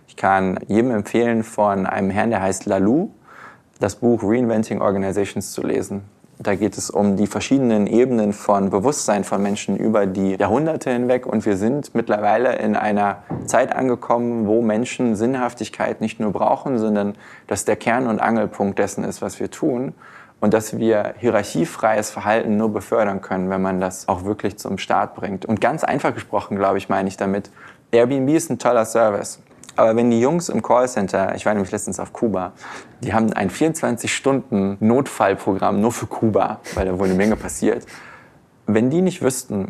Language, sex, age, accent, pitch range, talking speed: German, male, 20-39, German, 100-120 Hz, 175 wpm